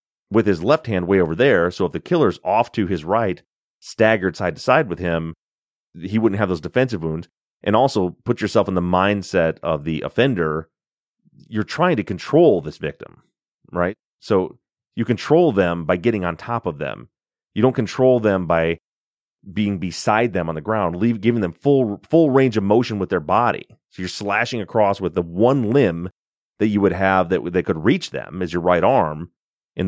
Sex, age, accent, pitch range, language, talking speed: male, 30-49, American, 85-115 Hz, English, 195 wpm